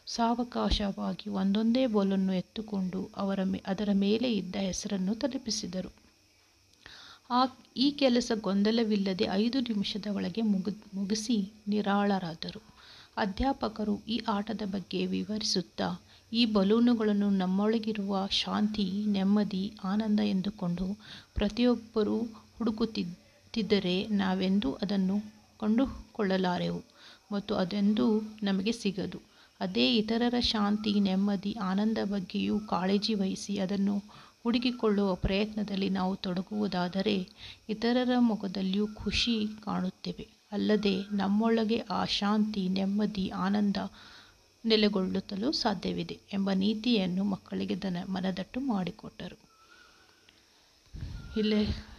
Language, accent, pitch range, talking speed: Kannada, native, 195-220 Hz, 80 wpm